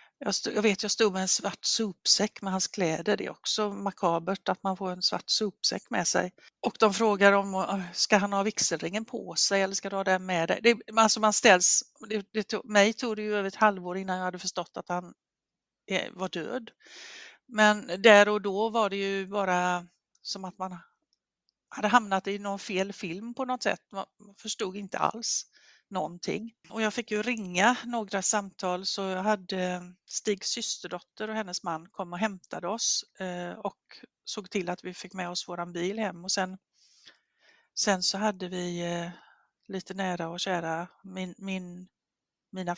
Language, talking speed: Swedish, 185 wpm